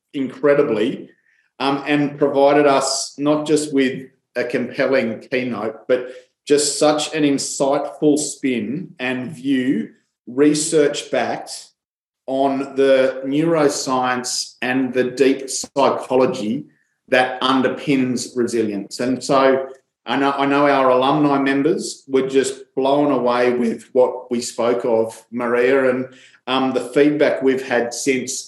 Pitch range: 125-140 Hz